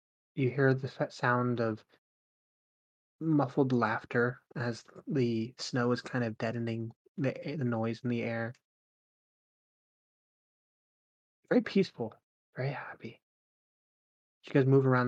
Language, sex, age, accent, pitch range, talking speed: English, male, 20-39, American, 115-140 Hz, 110 wpm